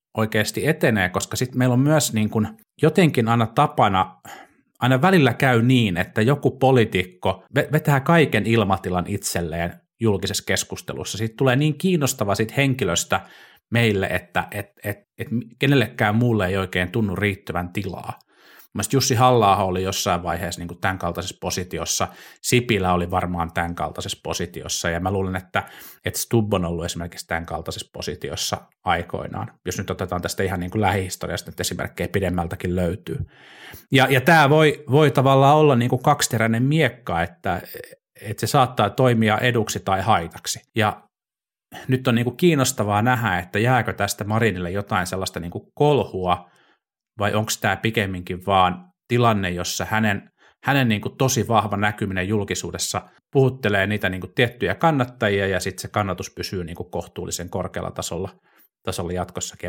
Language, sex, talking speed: Finnish, male, 140 wpm